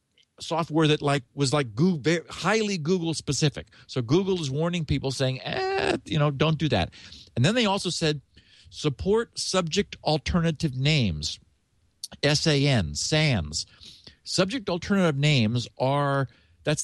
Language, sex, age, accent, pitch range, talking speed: English, male, 50-69, American, 115-160 Hz, 135 wpm